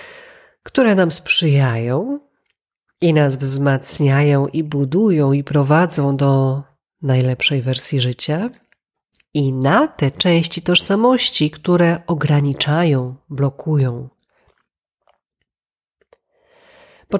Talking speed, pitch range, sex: 80 wpm, 150-225 Hz, female